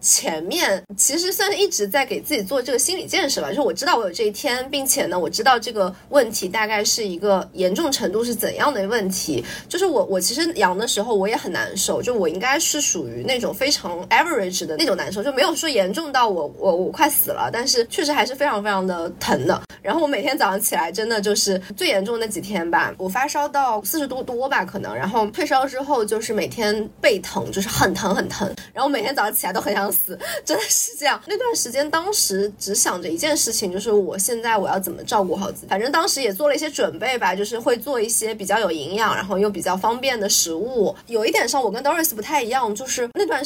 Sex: female